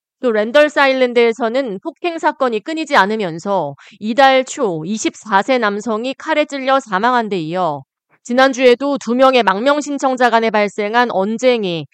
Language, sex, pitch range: Korean, female, 195-275 Hz